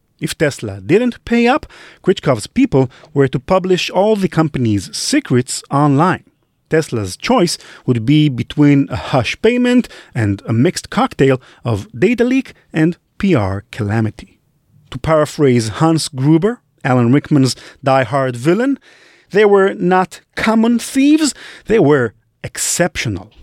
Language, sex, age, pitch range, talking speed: English, male, 40-59, 125-205 Hz, 125 wpm